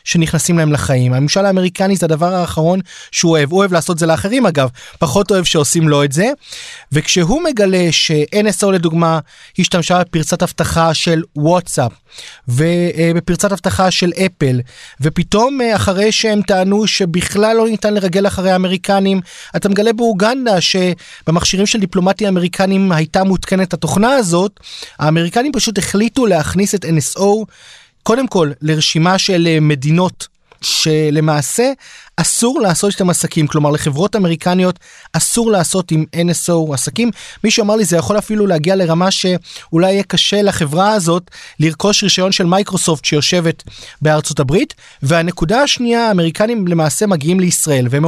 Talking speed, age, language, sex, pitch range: 135 wpm, 30-49, Hebrew, male, 160-205 Hz